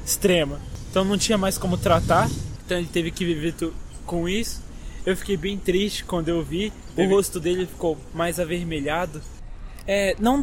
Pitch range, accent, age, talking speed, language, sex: 150-185 Hz, Brazilian, 20-39, 165 wpm, Portuguese, male